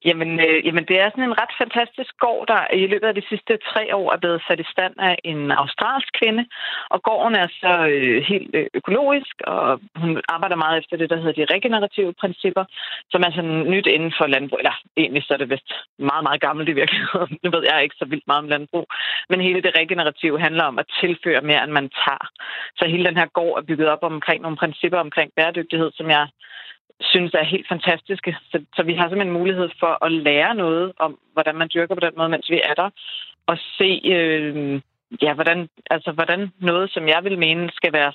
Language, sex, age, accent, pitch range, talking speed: Danish, female, 30-49, native, 155-185 Hz, 220 wpm